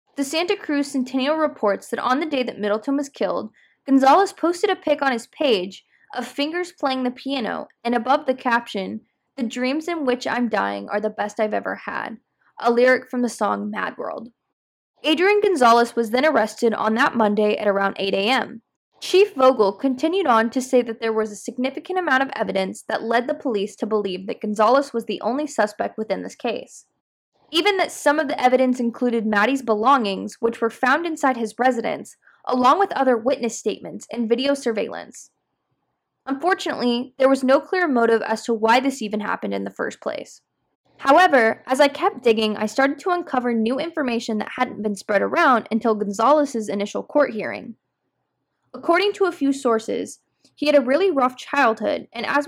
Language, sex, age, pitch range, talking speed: English, female, 10-29, 220-285 Hz, 185 wpm